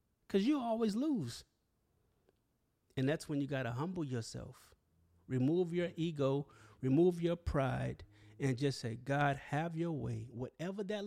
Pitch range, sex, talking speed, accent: 130-190 Hz, male, 145 wpm, American